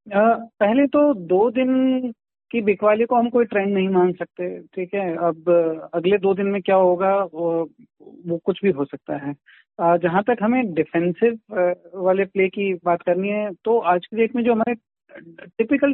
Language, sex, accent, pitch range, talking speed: Hindi, male, native, 180-220 Hz, 185 wpm